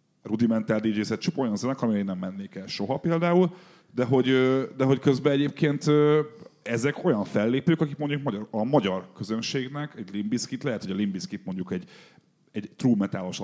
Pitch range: 100-145 Hz